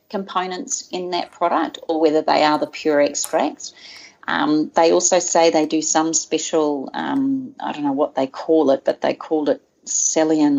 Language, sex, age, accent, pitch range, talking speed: English, female, 30-49, Australian, 150-210 Hz, 180 wpm